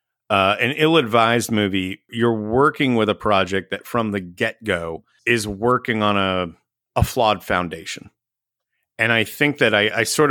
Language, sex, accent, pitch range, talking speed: English, male, American, 95-120 Hz, 155 wpm